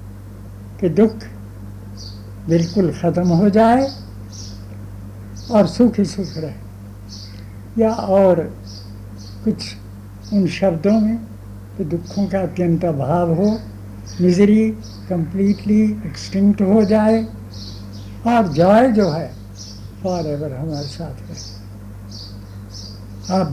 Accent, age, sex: native, 70-89, male